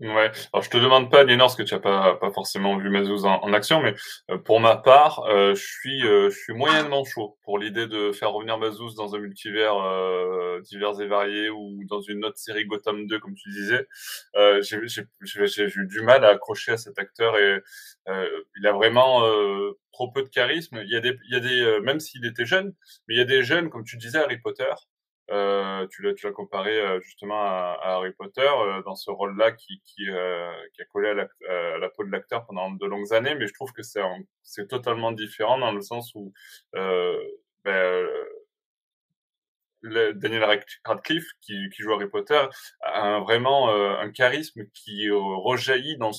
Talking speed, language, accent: 215 wpm, French, French